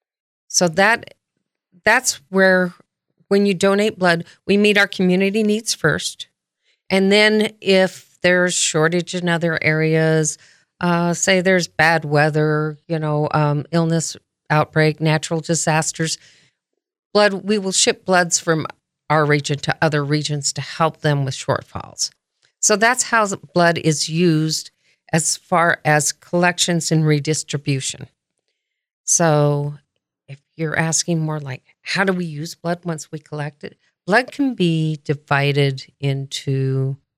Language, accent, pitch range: English, American, 145-180 Hz